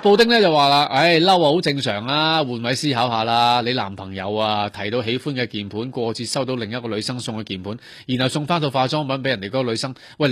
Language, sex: Chinese, male